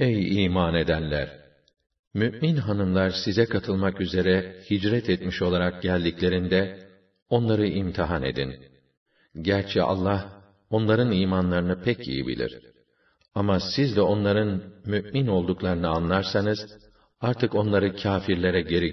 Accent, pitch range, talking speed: native, 90-105 Hz, 105 wpm